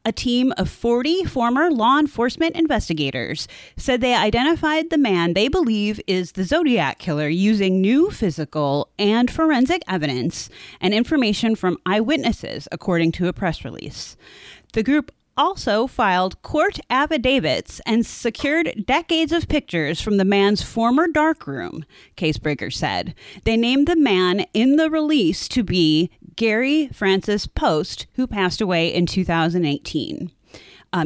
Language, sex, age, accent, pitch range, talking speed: English, female, 30-49, American, 180-265 Hz, 135 wpm